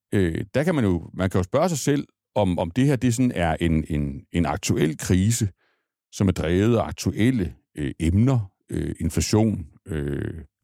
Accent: native